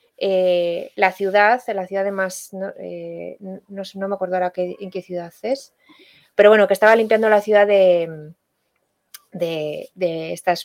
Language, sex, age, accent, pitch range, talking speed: Spanish, female, 20-39, Spanish, 190-235 Hz, 150 wpm